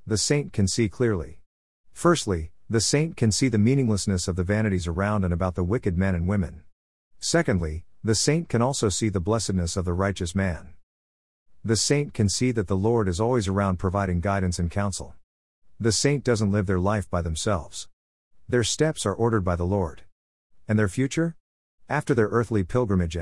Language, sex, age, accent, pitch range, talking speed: English, male, 50-69, American, 90-115 Hz, 185 wpm